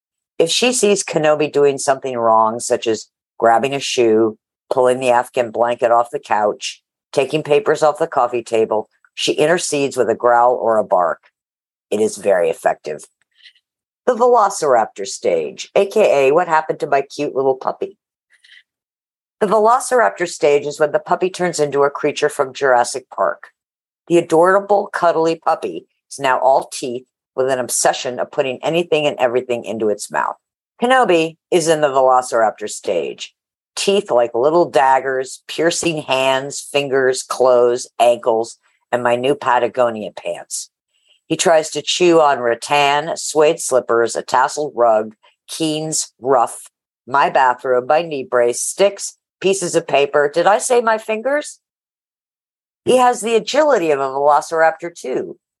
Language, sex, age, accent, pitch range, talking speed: English, female, 50-69, American, 125-170 Hz, 145 wpm